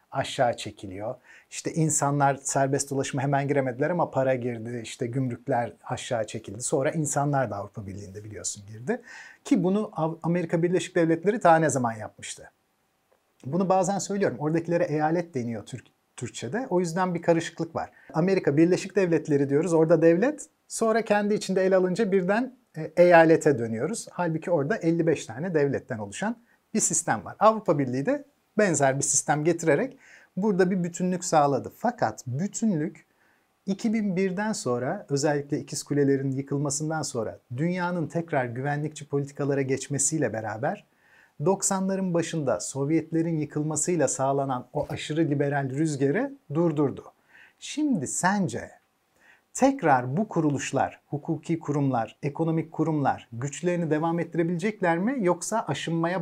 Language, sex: Turkish, male